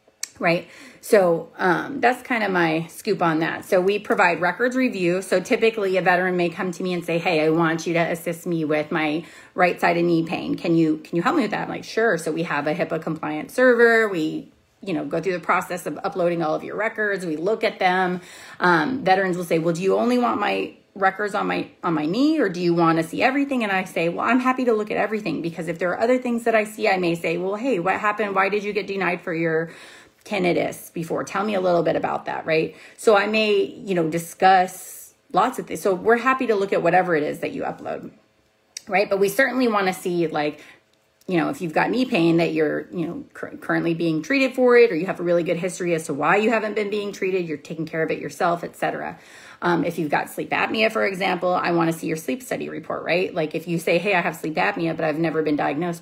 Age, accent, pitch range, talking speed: 30-49, American, 165-210 Hz, 255 wpm